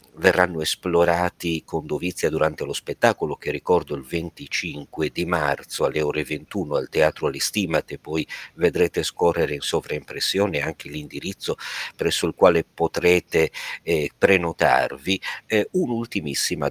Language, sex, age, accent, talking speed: Italian, male, 50-69, native, 120 wpm